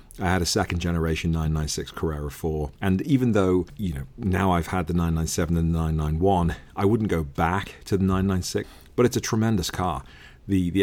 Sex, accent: male, British